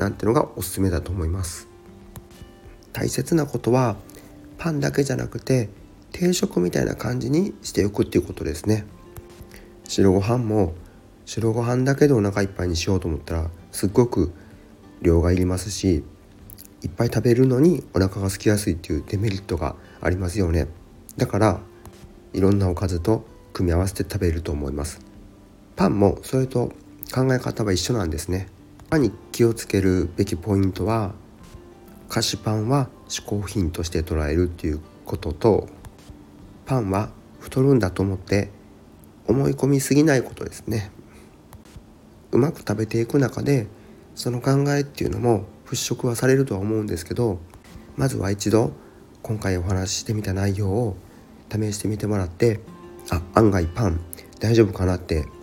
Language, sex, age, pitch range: Japanese, male, 40-59, 90-115 Hz